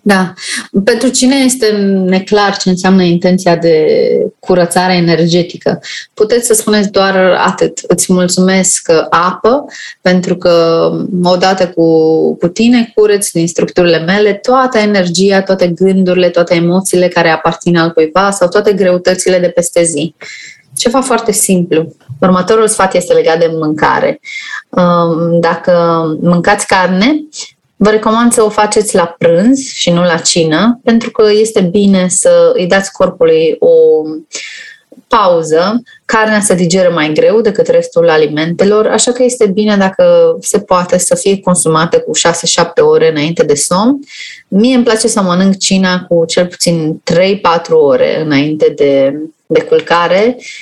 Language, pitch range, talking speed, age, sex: Romanian, 175-235 Hz, 140 wpm, 20-39, female